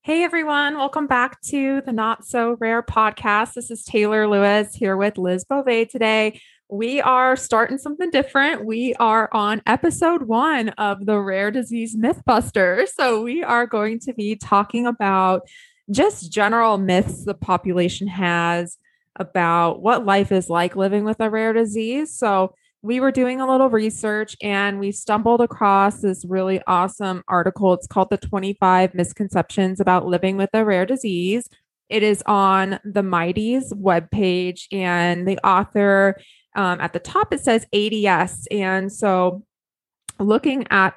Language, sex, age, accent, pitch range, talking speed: English, female, 20-39, American, 180-225 Hz, 150 wpm